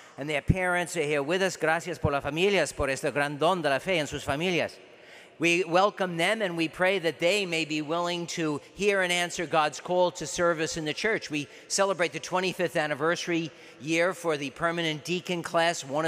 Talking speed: 205 wpm